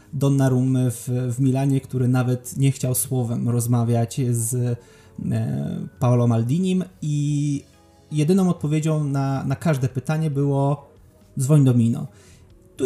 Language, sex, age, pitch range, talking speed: Polish, male, 20-39, 125-135 Hz, 115 wpm